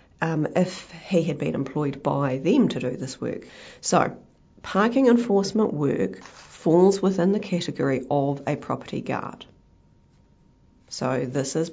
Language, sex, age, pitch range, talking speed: English, female, 40-59, 135-170 Hz, 140 wpm